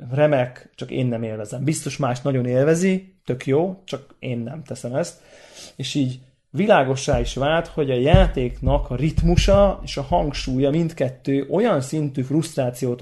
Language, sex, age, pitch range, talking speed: Hungarian, male, 30-49, 130-150 Hz, 150 wpm